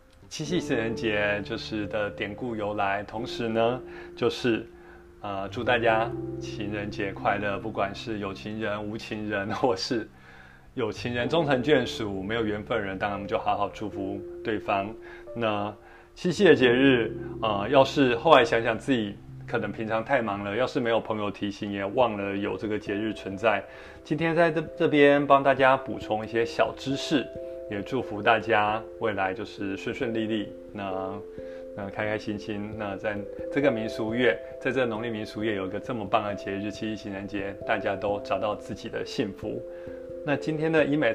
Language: Chinese